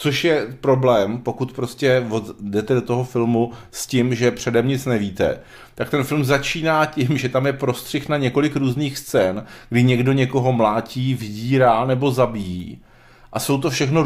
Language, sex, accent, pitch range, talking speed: Czech, male, native, 120-135 Hz, 165 wpm